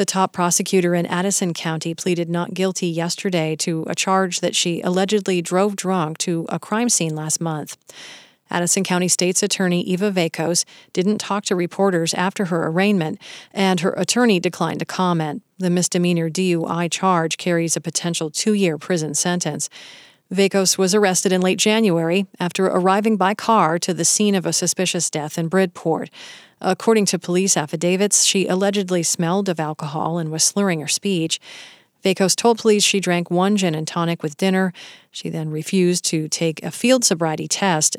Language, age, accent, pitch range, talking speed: English, 40-59, American, 165-195 Hz, 165 wpm